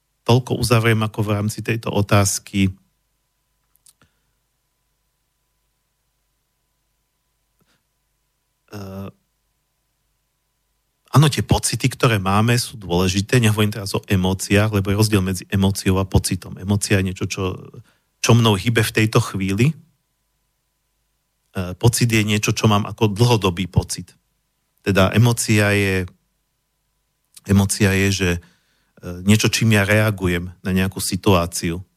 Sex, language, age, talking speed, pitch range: male, Slovak, 40-59, 110 wpm, 95-125 Hz